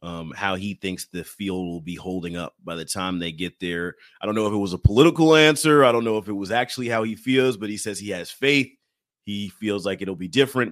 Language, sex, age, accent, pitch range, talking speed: English, male, 30-49, American, 100-150 Hz, 265 wpm